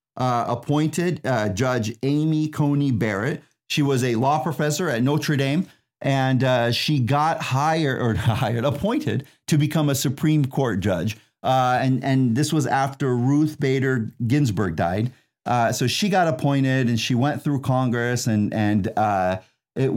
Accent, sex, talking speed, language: American, male, 160 wpm, English